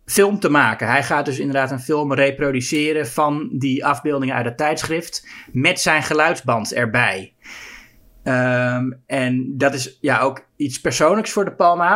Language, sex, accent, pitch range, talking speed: Dutch, male, Dutch, 125-160 Hz, 150 wpm